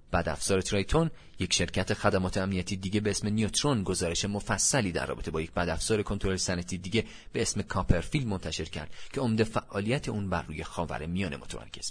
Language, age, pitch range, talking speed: Persian, 30-49, 90-110 Hz, 180 wpm